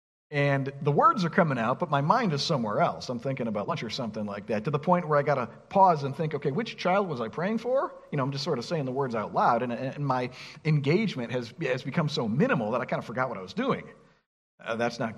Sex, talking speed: male, 270 wpm